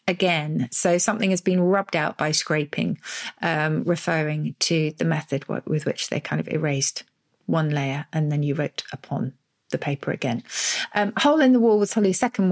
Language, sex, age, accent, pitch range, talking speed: English, female, 40-59, British, 150-185 Hz, 180 wpm